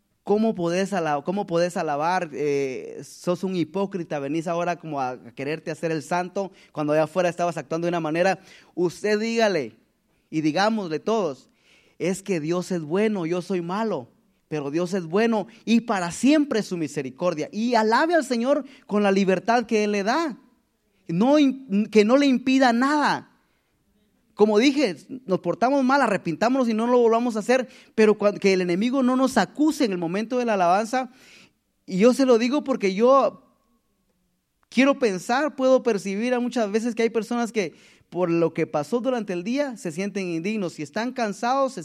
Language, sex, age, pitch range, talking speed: Spanish, male, 30-49, 170-240 Hz, 175 wpm